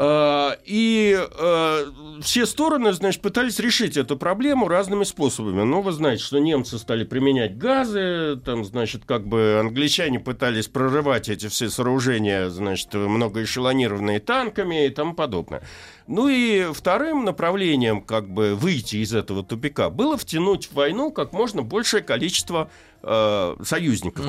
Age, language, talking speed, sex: 50-69, Russian, 135 wpm, male